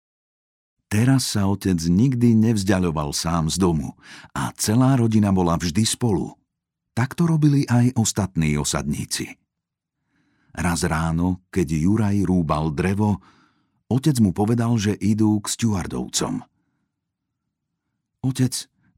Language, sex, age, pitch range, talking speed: Slovak, male, 50-69, 85-115 Hz, 105 wpm